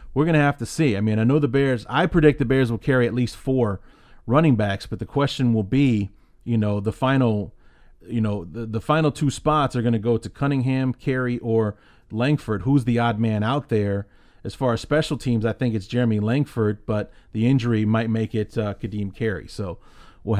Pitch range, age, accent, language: 105-130 Hz, 40-59, American, English